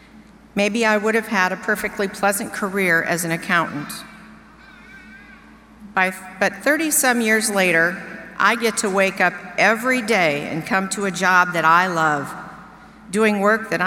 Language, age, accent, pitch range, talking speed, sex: English, 50-69, American, 175-215 Hz, 150 wpm, female